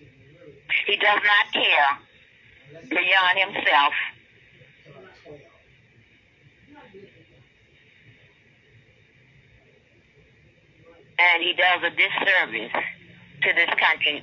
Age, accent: 40-59, American